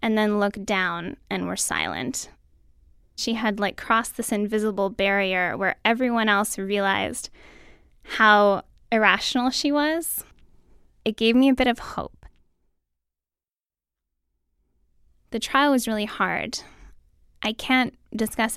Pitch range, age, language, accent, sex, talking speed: 190-225 Hz, 10-29, English, American, female, 120 wpm